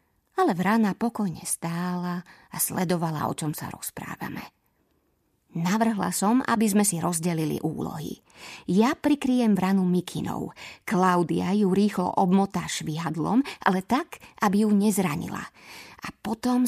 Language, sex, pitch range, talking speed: Slovak, female, 175-225 Hz, 120 wpm